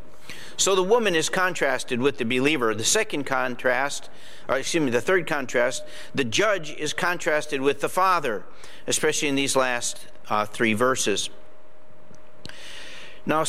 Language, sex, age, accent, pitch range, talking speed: English, male, 50-69, American, 135-170 Hz, 140 wpm